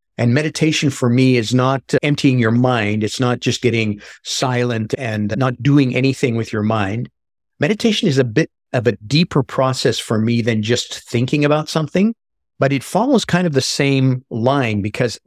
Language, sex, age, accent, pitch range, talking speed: English, male, 50-69, American, 115-145 Hz, 175 wpm